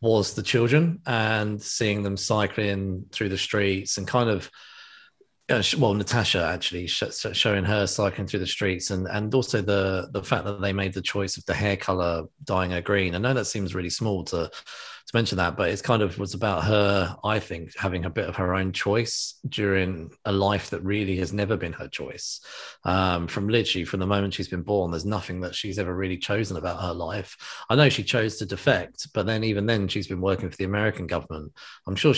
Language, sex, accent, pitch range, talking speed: English, male, British, 95-105 Hz, 210 wpm